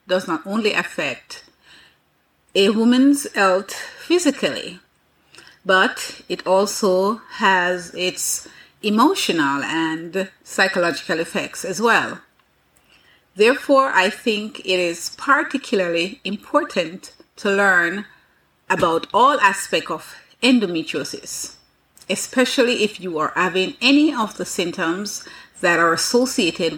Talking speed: 100 wpm